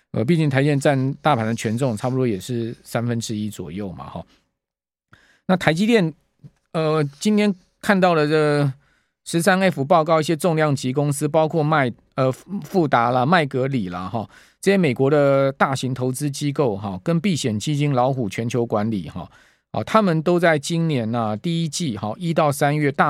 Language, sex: Chinese, male